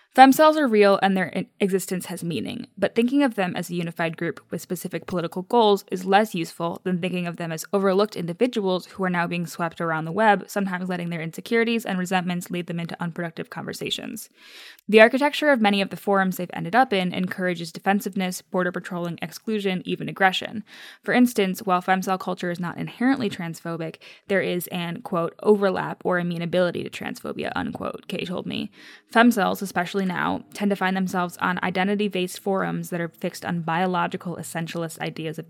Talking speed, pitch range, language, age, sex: 190 wpm, 175-205 Hz, English, 10-29, female